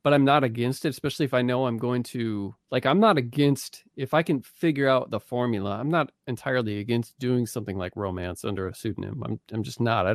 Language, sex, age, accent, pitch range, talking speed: English, male, 40-59, American, 120-145 Hz, 230 wpm